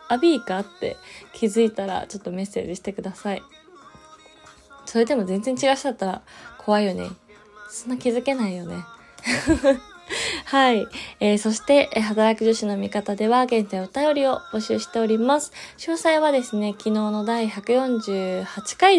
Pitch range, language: 200-255 Hz, Japanese